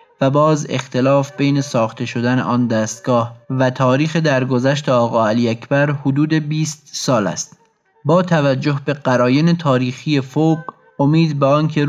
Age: 30-49